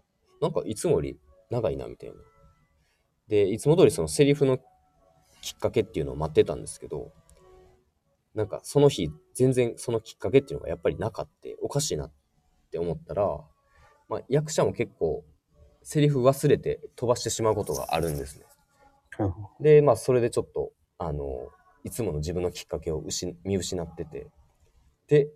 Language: Japanese